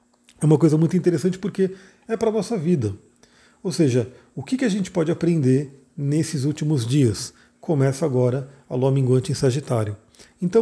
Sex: male